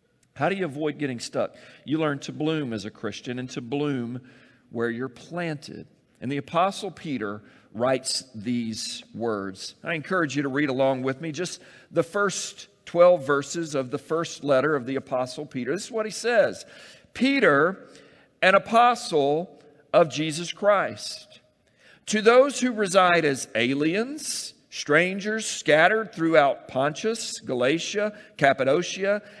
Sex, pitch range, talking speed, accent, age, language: male, 145-210 Hz, 145 wpm, American, 50-69, English